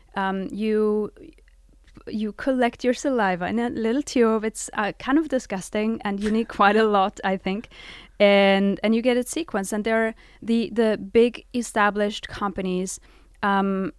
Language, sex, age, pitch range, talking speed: English, female, 20-39, 190-230 Hz, 165 wpm